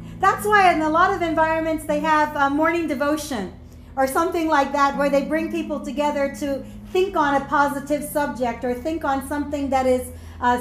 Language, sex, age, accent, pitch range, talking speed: English, female, 40-59, American, 280-345 Hz, 190 wpm